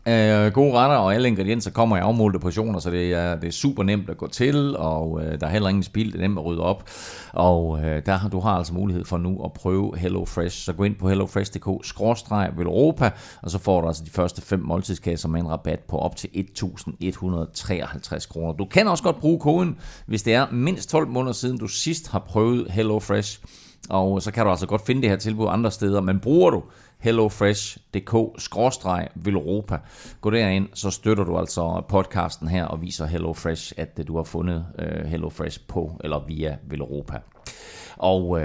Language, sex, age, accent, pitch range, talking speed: Danish, male, 30-49, native, 85-110 Hz, 195 wpm